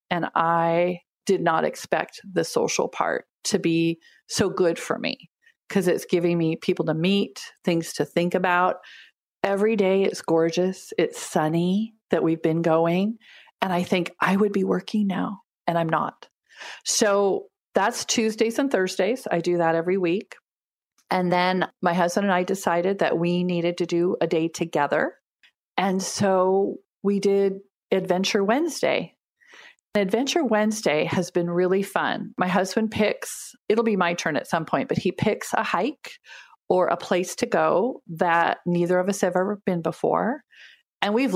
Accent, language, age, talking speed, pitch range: American, English, 40-59, 165 wpm, 170-210 Hz